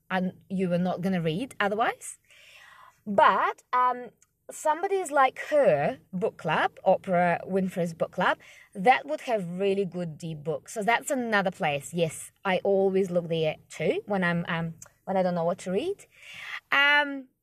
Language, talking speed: Russian, 160 wpm